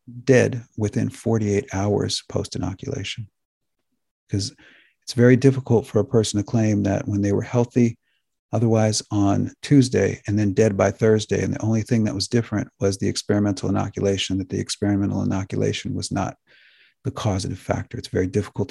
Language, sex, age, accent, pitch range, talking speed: English, male, 50-69, American, 100-120 Hz, 165 wpm